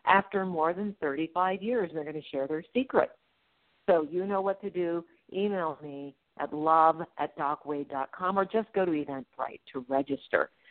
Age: 50-69